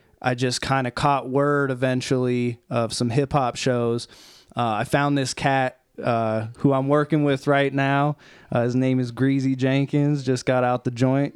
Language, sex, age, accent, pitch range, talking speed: English, male, 20-39, American, 125-145 Hz, 185 wpm